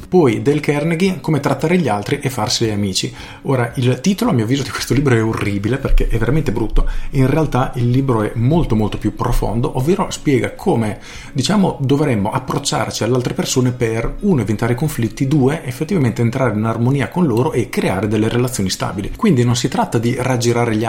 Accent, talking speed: native, 190 wpm